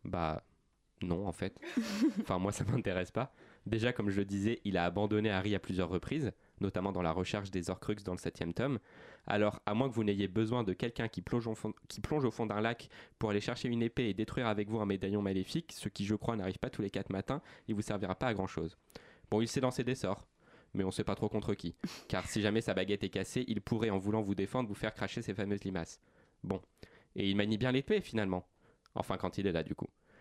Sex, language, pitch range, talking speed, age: male, French, 100-125 Hz, 245 wpm, 20-39